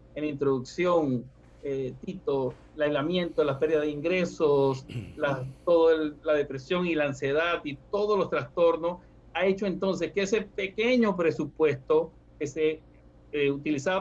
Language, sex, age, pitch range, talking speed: Spanish, male, 60-79, 155-200 Hz, 135 wpm